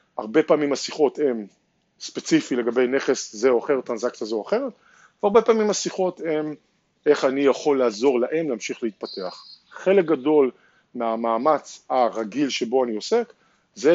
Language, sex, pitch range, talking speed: Hebrew, male, 130-190 Hz, 140 wpm